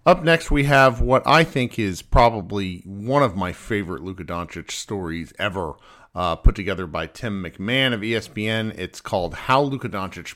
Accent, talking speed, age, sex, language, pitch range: American, 175 wpm, 40-59, male, English, 90-125 Hz